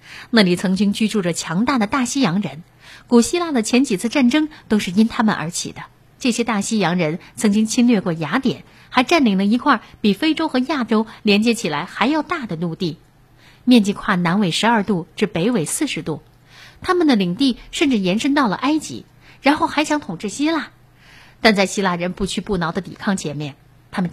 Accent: native